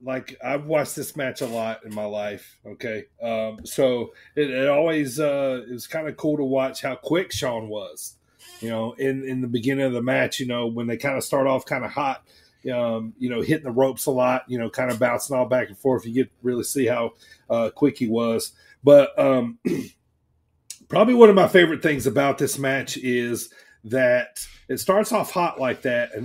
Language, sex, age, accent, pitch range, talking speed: English, male, 30-49, American, 125-155 Hz, 215 wpm